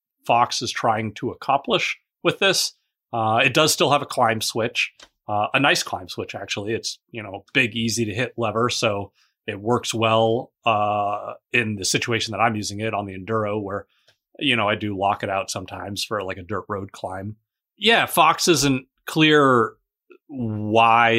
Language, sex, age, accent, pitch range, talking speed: English, male, 30-49, American, 105-125 Hz, 185 wpm